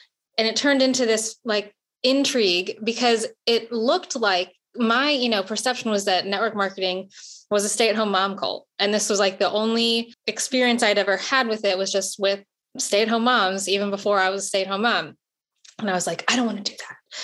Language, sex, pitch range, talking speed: English, female, 195-245 Hz, 200 wpm